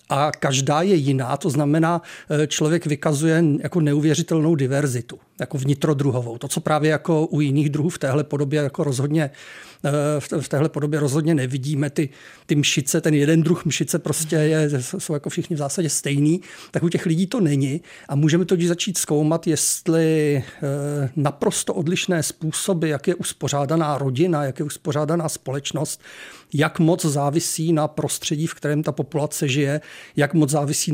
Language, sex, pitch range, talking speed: Czech, male, 145-165 Hz, 155 wpm